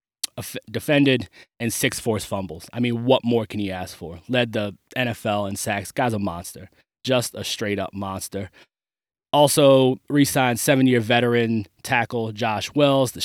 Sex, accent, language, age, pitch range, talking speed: male, American, English, 20-39, 105-120 Hz, 150 wpm